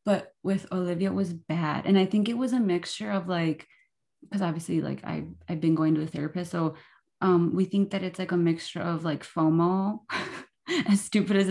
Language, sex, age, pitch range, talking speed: English, female, 20-39, 160-190 Hz, 210 wpm